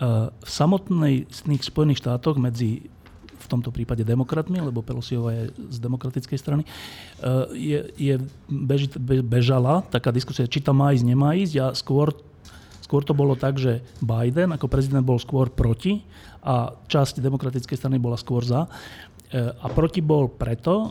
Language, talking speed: Slovak, 155 wpm